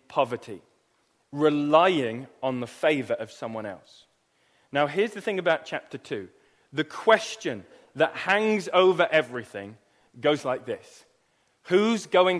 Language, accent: English, British